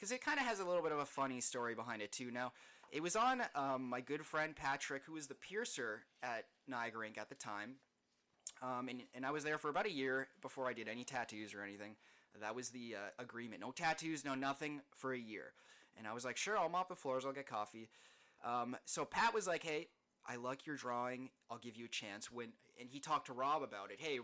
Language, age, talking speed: English, 20-39, 245 wpm